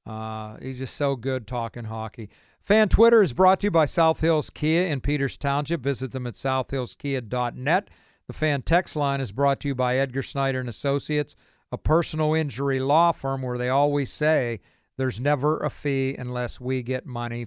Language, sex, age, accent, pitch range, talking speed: English, male, 50-69, American, 130-160 Hz, 180 wpm